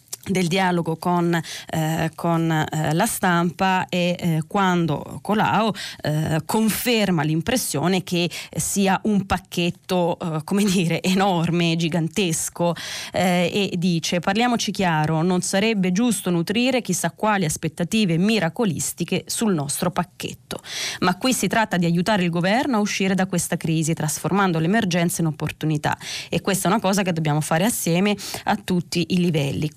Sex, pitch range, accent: female, 160-195 Hz, native